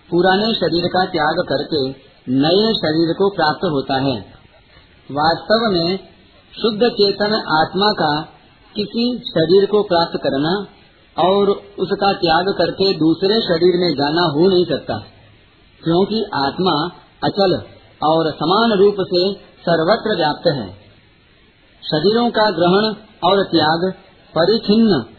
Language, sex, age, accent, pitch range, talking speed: Hindi, male, 50-69, native, 155-200 Hz, 115 wpm